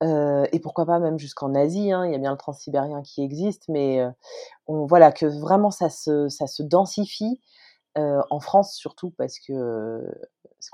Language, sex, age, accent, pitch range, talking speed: French, female, 30-49, French, 130-175 Hz, 190 wpm